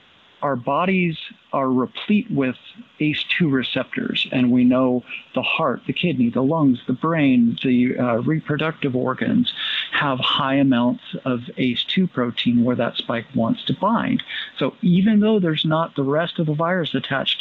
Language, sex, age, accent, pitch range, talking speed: English, male, 50-69, American, 130-180 Hz, 155 wpm